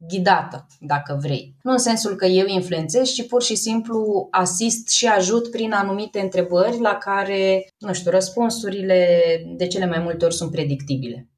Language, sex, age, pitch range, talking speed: Romanian, female, 20-39, 175-230 Hz, 165 wpm